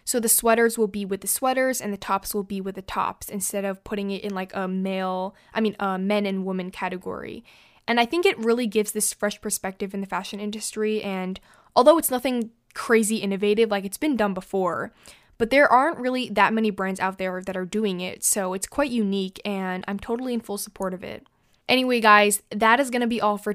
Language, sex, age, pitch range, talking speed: English, female, 10-29, 195-225 Hz, 225 wpm